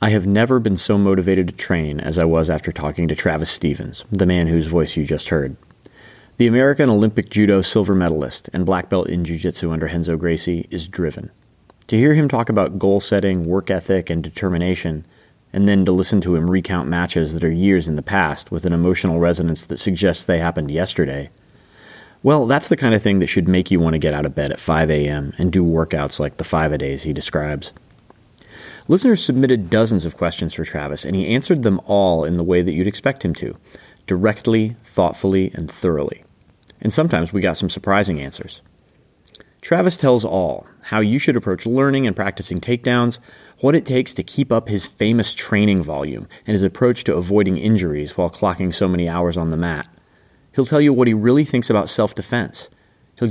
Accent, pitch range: American, 85-110 Hz